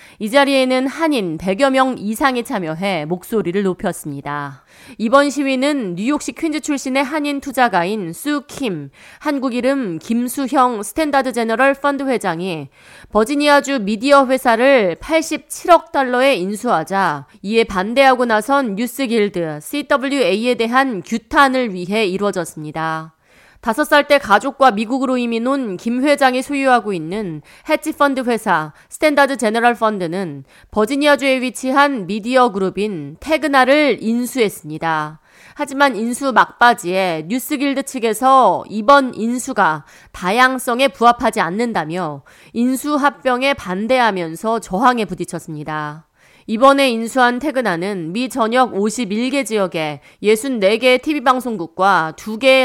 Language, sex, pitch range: Korean, female, 190-270 Hz